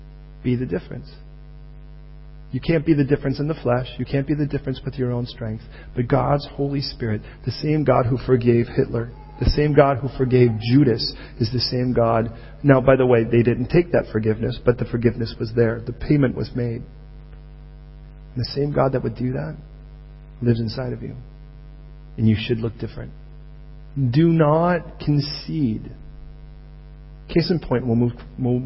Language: English